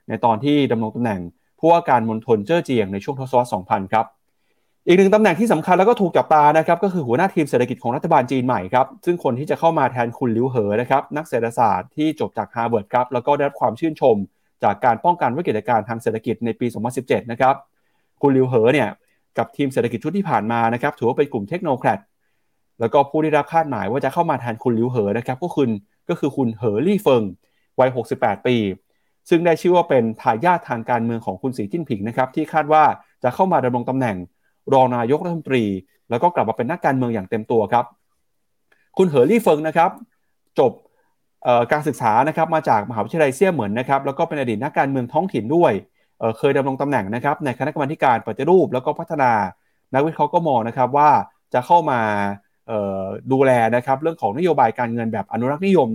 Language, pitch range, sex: Thai, 120-160 Hz, male